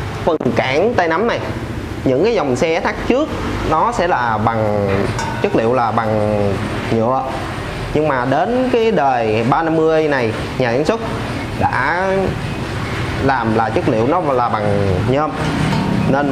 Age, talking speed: 20-39, 145 wpm